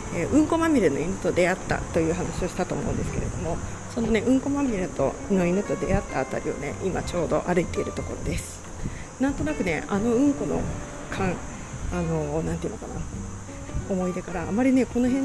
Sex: female